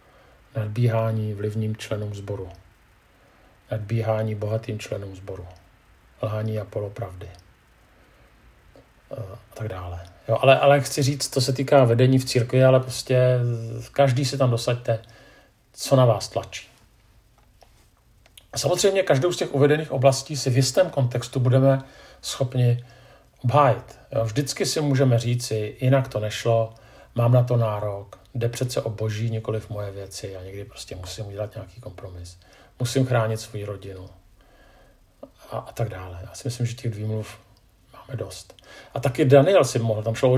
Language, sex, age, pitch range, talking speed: Czech, male, 50-69, 105-130 Hz, 145 wpm